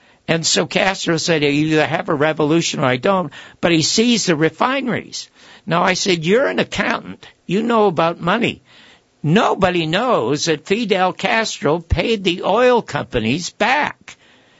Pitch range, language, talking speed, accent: 150-200 Hz, English, 150 wpm, American